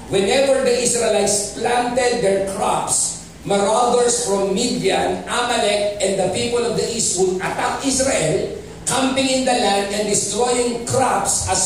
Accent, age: native, 40-59